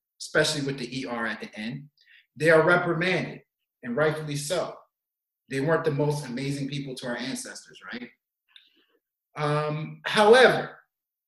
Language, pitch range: English, 145-190 Hz